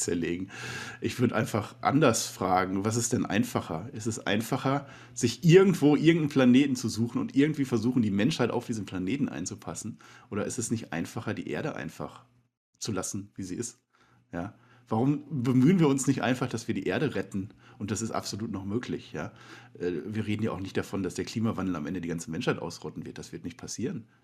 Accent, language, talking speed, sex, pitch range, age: German, German, 200 wpm, male, 95-125 Hz, 40-59